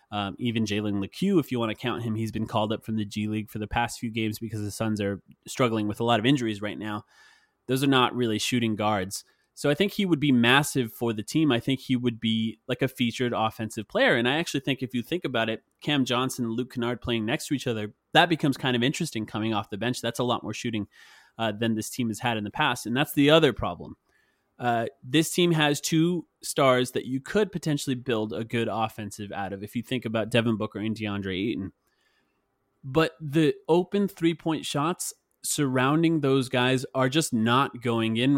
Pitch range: 110-140 Hz